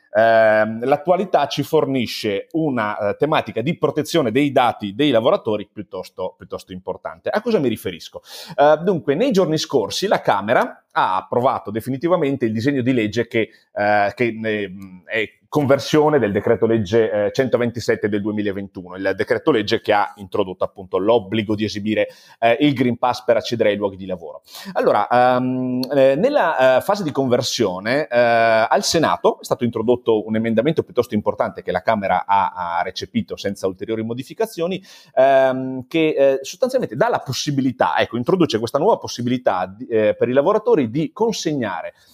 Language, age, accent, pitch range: Italian, 30-49, native, 105-150 Hz